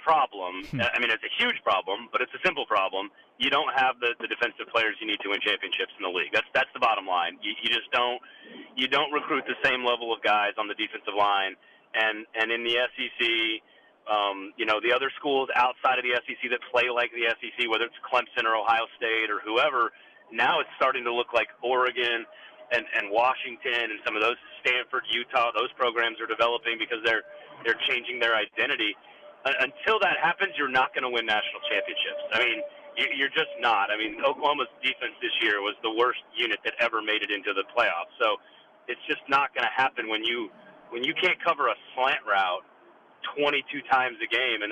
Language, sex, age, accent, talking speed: English, male, 30-49, American, 210 wpm